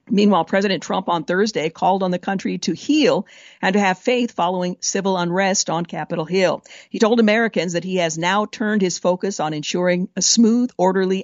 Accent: American